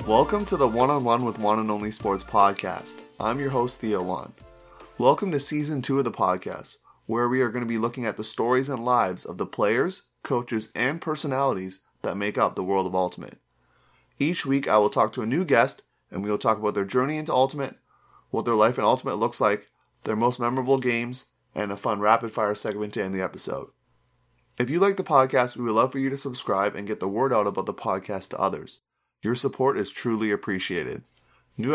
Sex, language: male, English